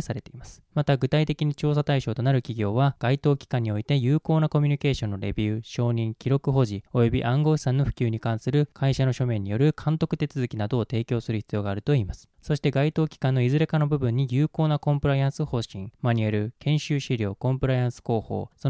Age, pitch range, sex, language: 20-39, 120-145 Hz, male, Japanese